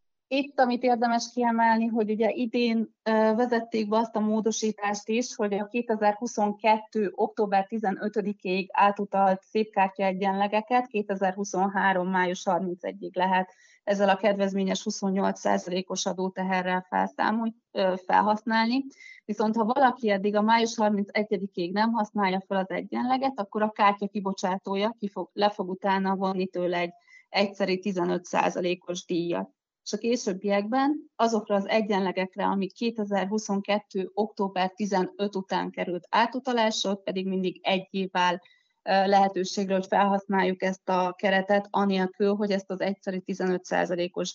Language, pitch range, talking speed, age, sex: Hungarian, 190-225 Hz, 110 wpm, 30-49, female